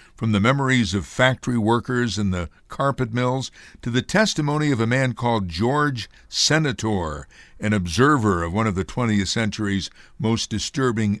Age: 60-79